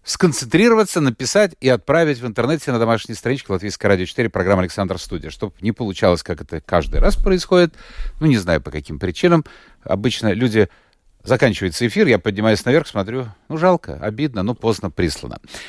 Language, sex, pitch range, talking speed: Russian, male, 110-170 Hz, 165 wpm